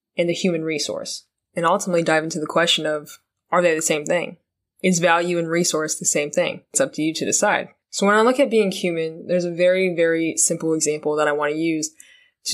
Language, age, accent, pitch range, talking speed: English, 20-39, American, 155-185 Hz, 230 wpm